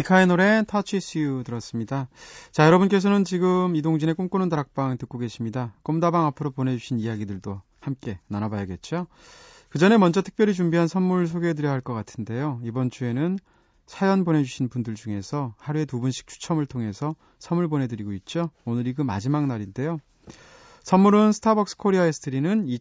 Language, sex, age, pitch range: Korean, male, 30-49, 120-170 Hz